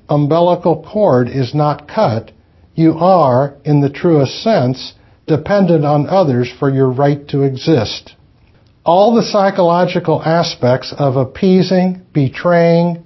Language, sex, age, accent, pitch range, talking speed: English, male, 60-79, American, 125-175 Hz, 120 wpm